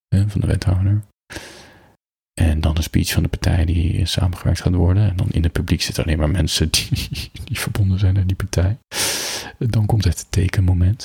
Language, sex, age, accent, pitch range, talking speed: Dutch, male, 40-59, Dutch, 85-100 Hz, 185 wpm